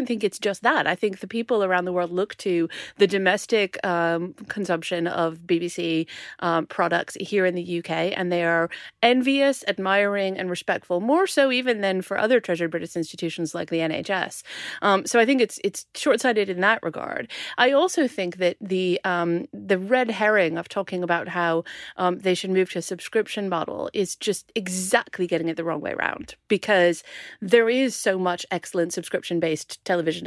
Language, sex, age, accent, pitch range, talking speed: English, female, 30-49, American, 175-220 Hz, 180 wpm